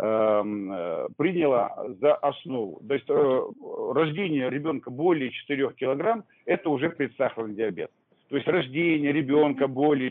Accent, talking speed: native, 120 wpm